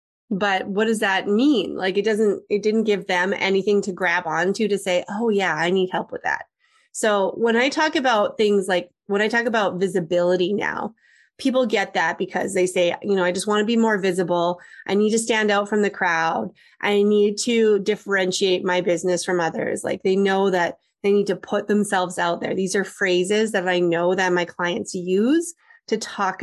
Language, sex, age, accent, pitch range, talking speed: English, female, 30-49, American, 180-220 Hz, 210 wpm